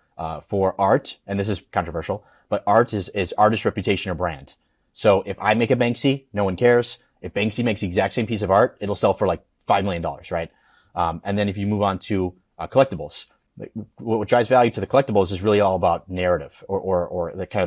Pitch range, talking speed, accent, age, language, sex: 95-105 Hz, 235 wpm, American, 30-49, English, male